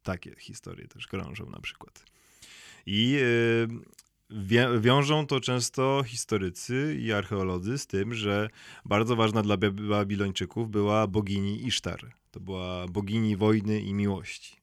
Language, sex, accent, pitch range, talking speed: Polish, male, native, 100-130 Hz, 120 wpm